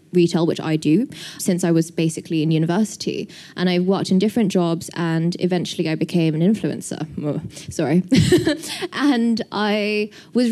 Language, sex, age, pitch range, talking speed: English, female, 20-39, 170-215 Hz, 155 wpm